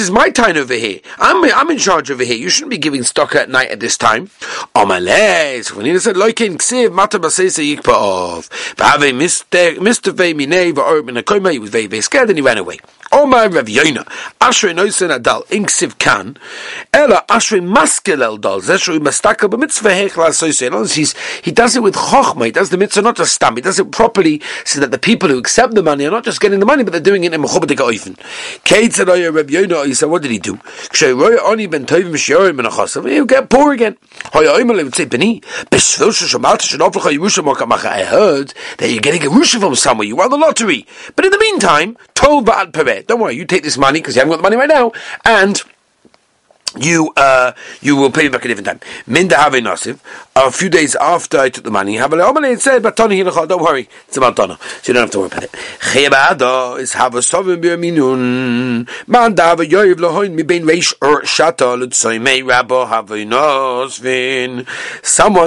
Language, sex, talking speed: English, male, 185 wpm